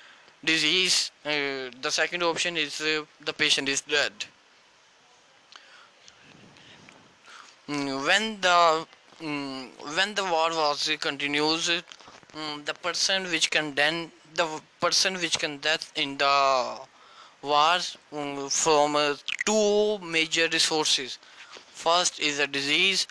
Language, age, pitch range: Urdu, 20-39, 145-170 Hz